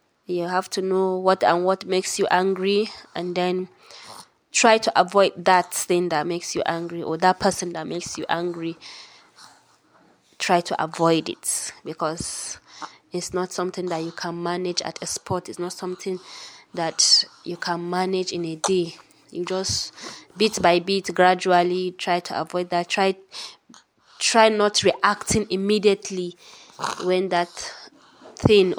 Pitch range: 170-190 Hz